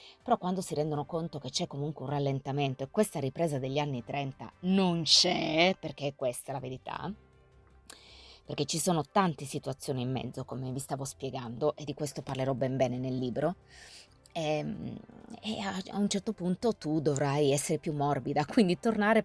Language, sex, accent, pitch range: Italian, female, native, 140-175 Hz